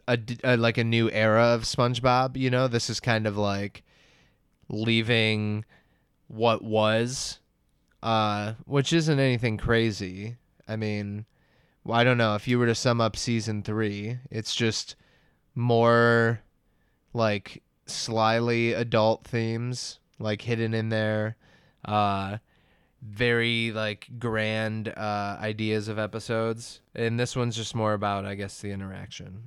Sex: male